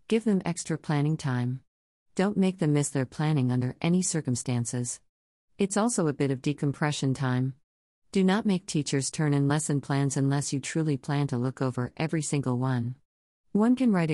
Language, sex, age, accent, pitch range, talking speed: English, female, 40-59, American, 130-165 Hz, 180 wpm